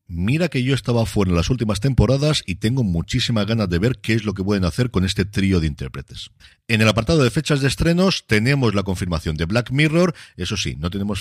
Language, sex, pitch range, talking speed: Spanish, male, 85-125 Hz, 230 wpm